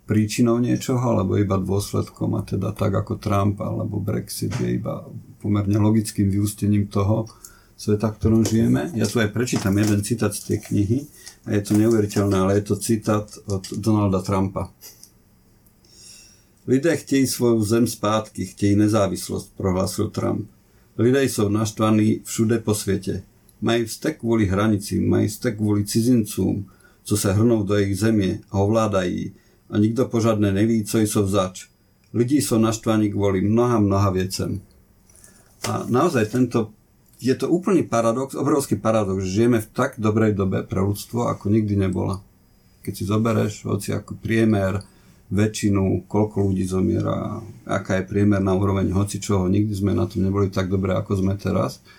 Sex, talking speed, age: male, 155 wpm, 50-69